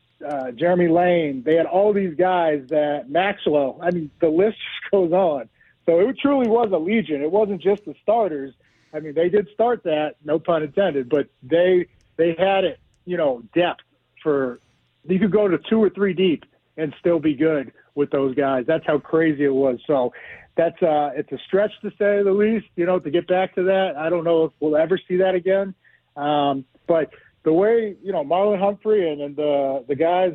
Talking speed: 205 wpm